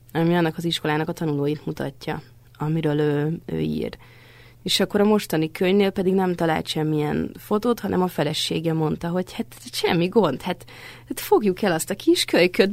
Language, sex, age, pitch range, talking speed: Hungarian, female, 30-49, 150-185 Hz, 170 wpm